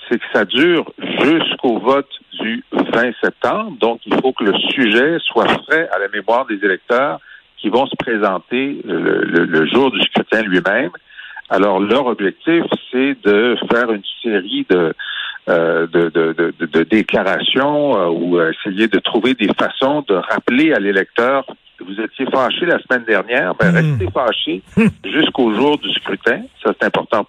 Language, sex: French, male